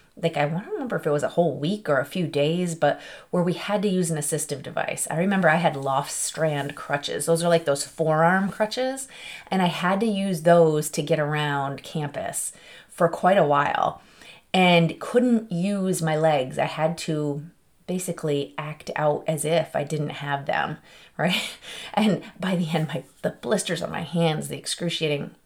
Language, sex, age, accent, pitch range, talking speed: English, female, 30-49, American, 150-180 Hz, 190 wpm